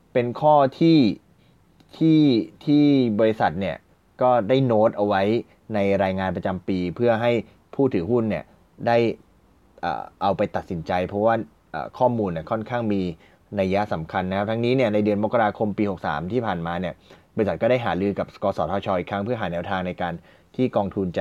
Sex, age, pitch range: male, 20-39, 90-120 Hz